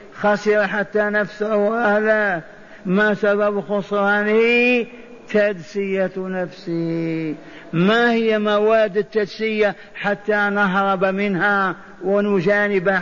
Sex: male